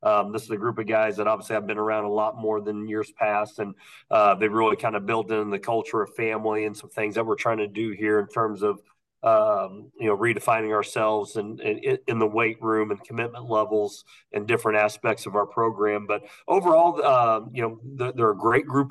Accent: American